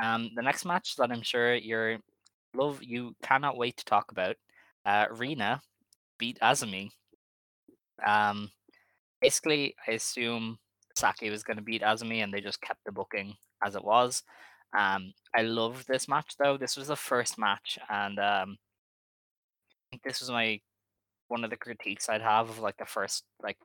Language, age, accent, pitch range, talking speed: English, 20-39, Irish, 100-115 Hz, 165 wpm